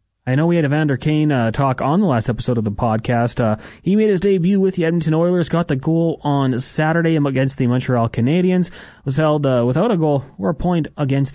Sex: male